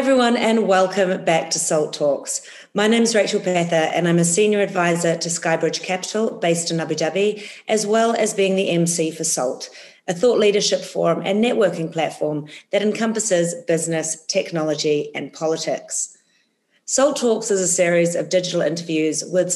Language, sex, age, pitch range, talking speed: English, female, 40-59, 160-195 Hz, 170 wpm